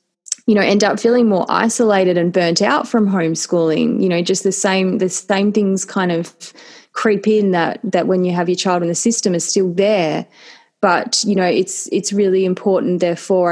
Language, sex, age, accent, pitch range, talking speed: English, female, 20-39, Australian, 170-195 Hz, 200 wpm